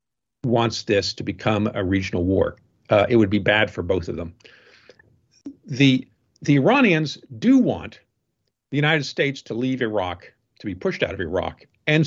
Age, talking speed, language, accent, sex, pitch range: 50-69, 170 wpm, English, American, male, 110-145 Hz